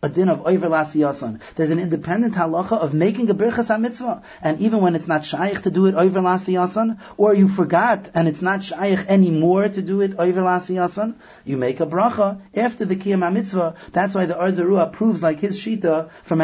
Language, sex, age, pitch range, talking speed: English, male, 30-49, 165-210 Hz, 175 wpm